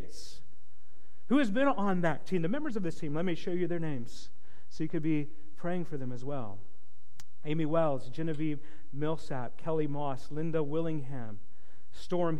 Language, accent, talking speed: English, American, 170 wpm